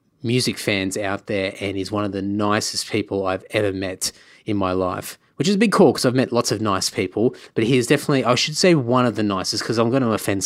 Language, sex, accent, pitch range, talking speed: English, male, Australian, 100-130 Hz, 260 wpm